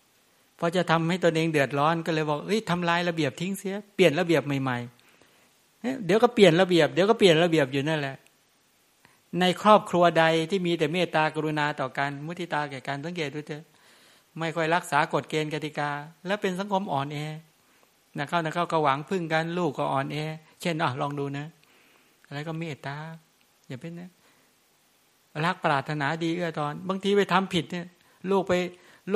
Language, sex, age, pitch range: English, male, 60-79, 150-185 Hz